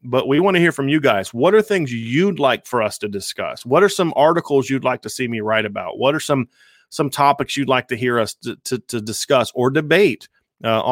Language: English